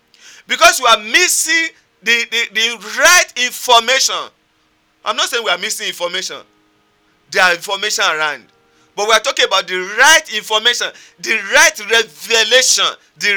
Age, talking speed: 50-69, 145 wpm